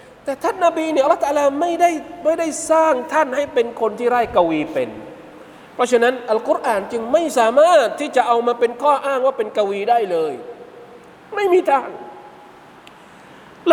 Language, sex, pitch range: Thai, male, 180-275 Hz